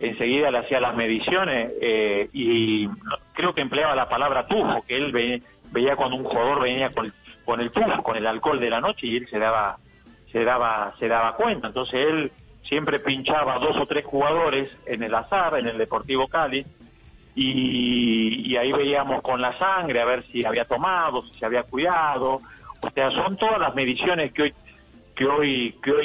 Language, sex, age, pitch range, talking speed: Spanish, male, 50-69, 120-145 Hz, 195 wpm